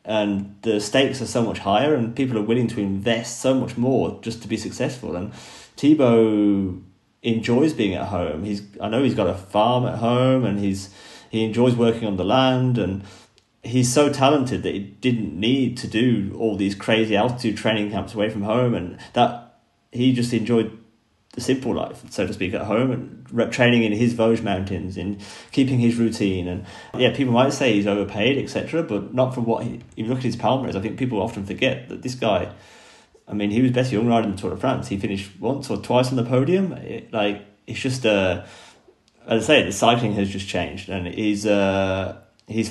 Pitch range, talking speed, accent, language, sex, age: 100-120 Hz, 205 wpm, British, English, male, 30-49